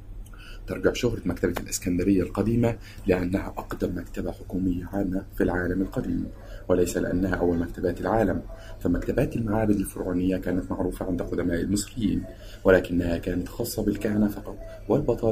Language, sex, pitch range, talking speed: Arabic, male, 90-105 Hz, 120 wpm